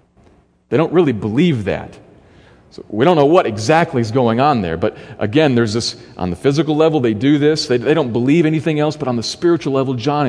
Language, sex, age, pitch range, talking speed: English, male, 40-59, 95-140 Hz, 220 wpm